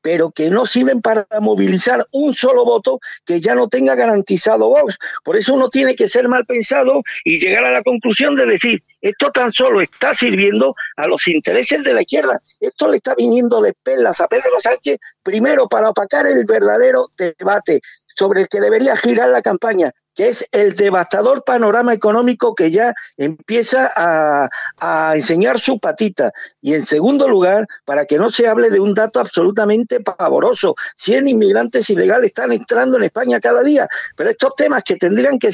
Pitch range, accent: 200-330 Hz, Mexican